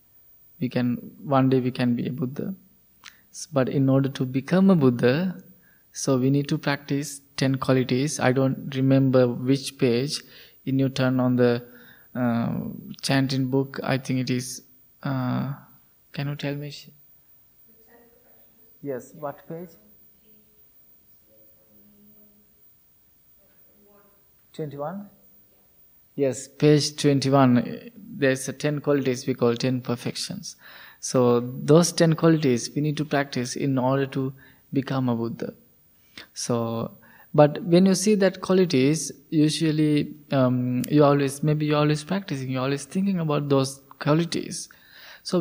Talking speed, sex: 125 wpm, male